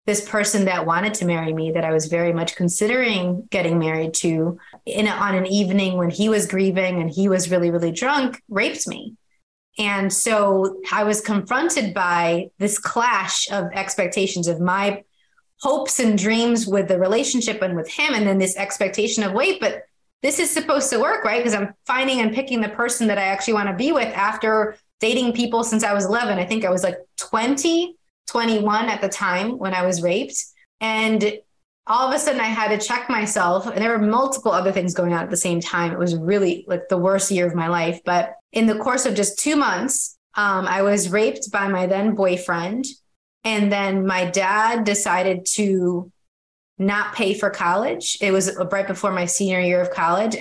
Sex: female